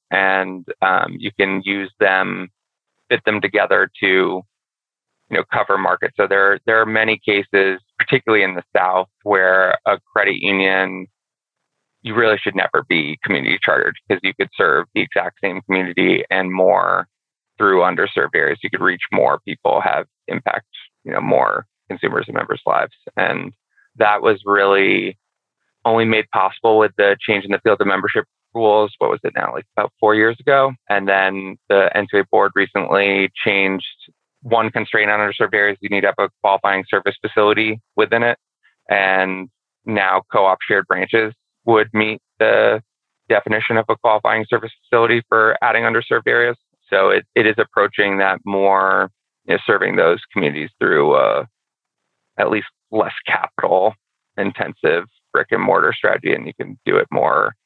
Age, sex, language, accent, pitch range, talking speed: 20-39, male, English, American, 95-110 Hz, 160 wpm